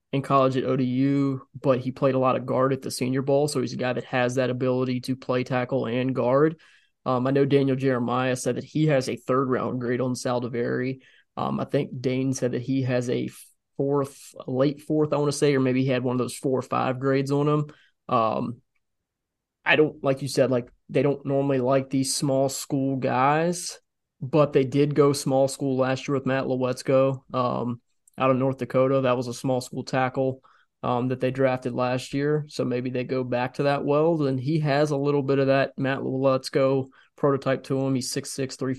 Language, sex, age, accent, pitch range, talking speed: English, male, 20-39, American, 125-140 Hz, 220 wpm